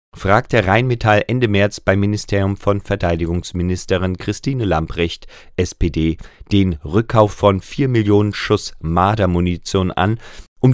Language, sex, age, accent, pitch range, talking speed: German, male, 40-59, German, 85-110 Hz, 115 wpm